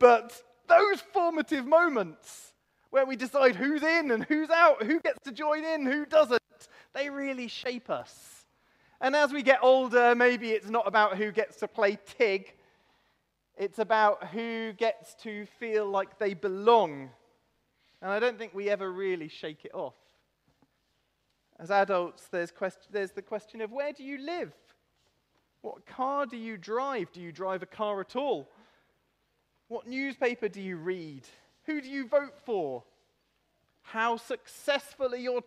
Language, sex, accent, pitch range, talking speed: English, male, British, 200-280 Hz, 155 wpm